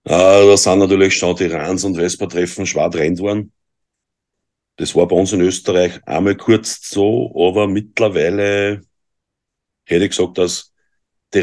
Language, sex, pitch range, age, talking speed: German, male, 85-95 Hz, 50-69, 140 wpm